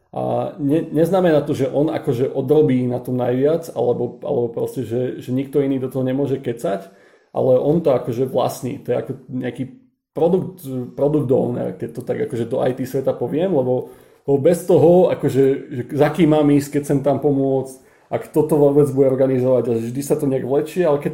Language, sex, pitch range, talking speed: Slovak, male, 130-155 Hz, 190 wpm